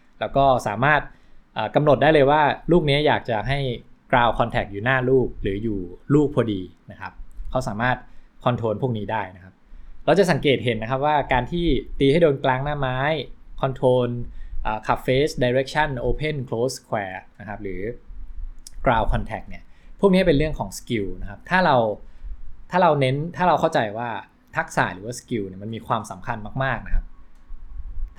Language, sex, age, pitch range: English, male, 20-39, 95-135 Hz